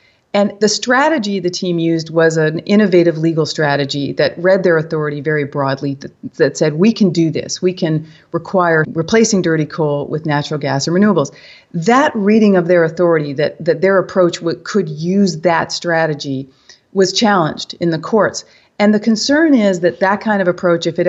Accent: American